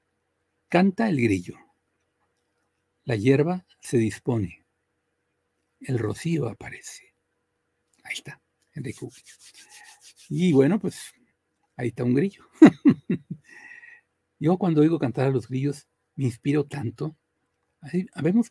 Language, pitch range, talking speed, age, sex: Spanish, 125-160 Hz, 100 wpm, 60-79, male